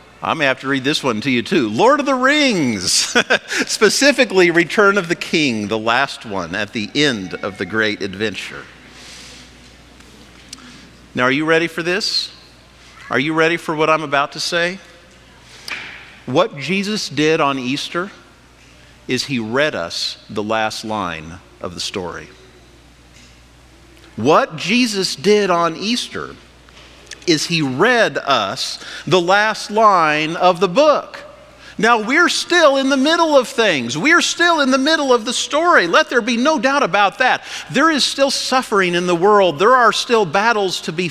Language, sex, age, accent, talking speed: English, male, 50-69, American, 160 wpm